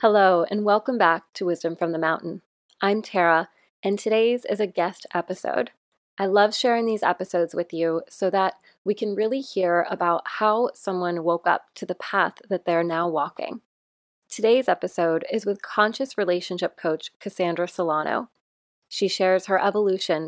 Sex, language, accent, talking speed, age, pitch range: female, English, American, 165 wpm, 20-39, 170-210 Hz